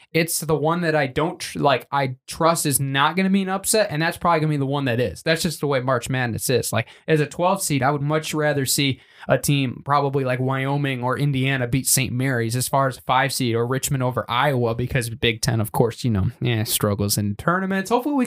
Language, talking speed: English, 245 wpm